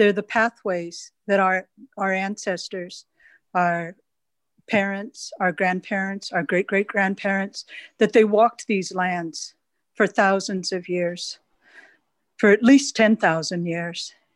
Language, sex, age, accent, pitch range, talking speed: English, female, 50-69, American, 180-215 Hz, 115 wpm